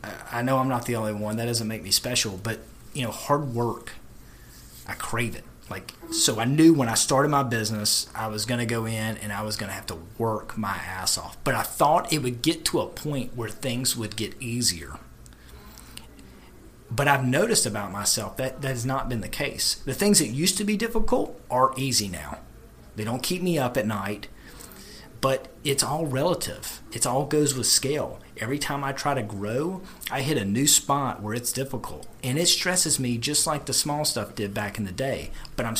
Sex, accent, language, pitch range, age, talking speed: male, American, English, 105-140 Hz, 30-49, 215 wpm